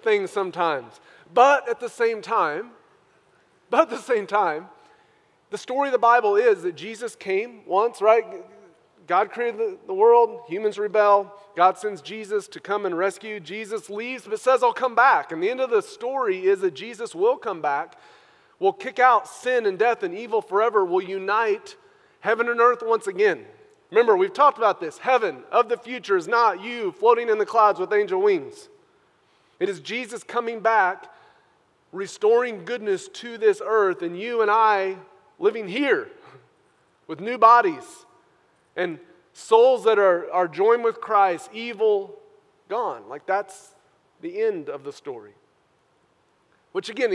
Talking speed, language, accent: 165 wpm, English, American